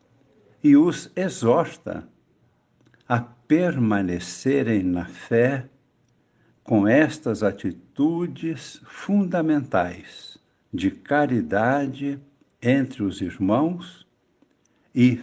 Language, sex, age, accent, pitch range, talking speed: Portuguese, male, 60-79, Brazilian, 105-145 Hz, 65 wpm